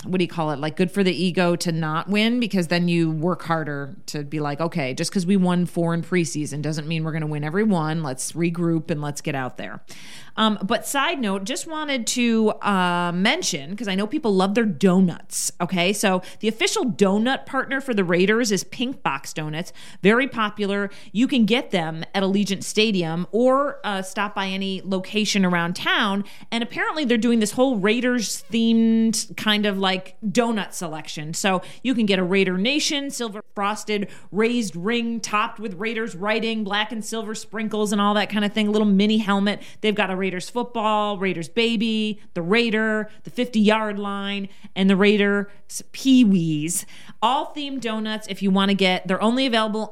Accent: American